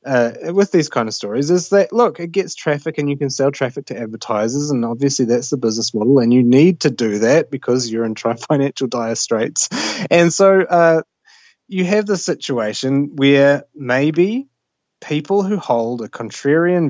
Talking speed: 180 wpm